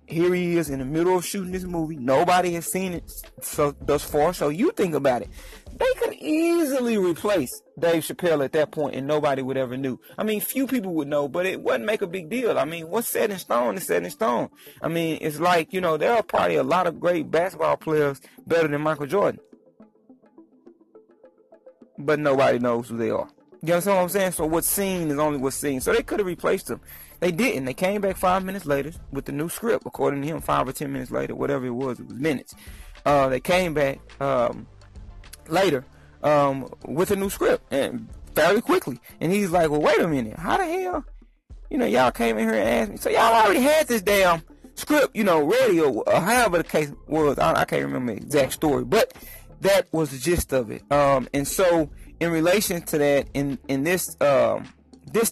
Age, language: 30-49, English